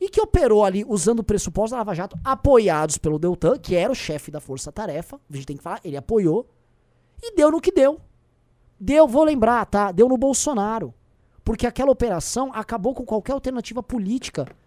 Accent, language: Brazilian, Portuguese